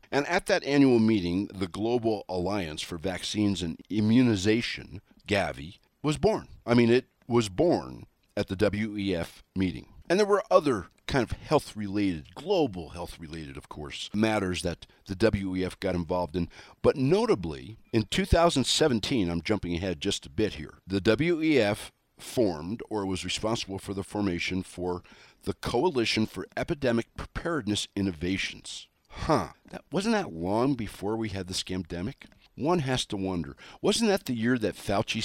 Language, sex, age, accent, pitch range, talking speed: English, male, 50-69, American, 90-115 Hz, 150 wpm